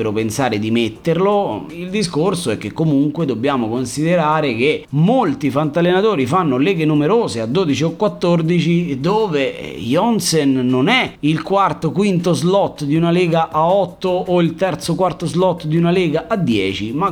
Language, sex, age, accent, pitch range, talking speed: Italian, male, 30-49, native, 135-210 Hz, 155 wpm